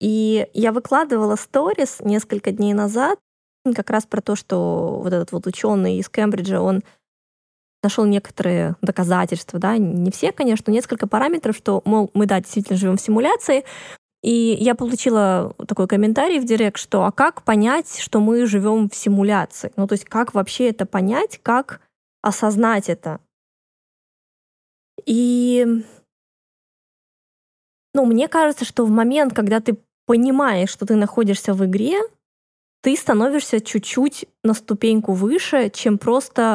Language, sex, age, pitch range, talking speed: Russian, female, 20-39, 200-245 Hz, 140 wpm